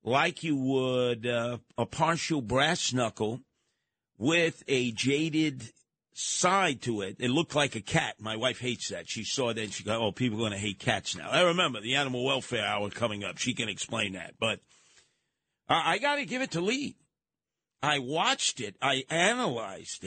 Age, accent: 50-69, American